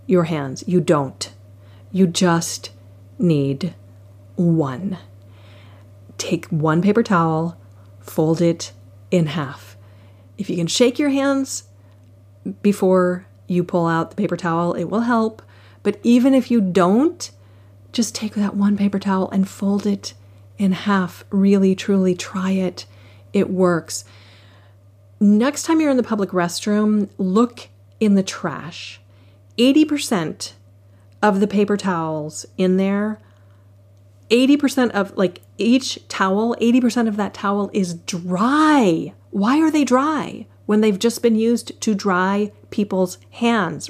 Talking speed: 130 wpm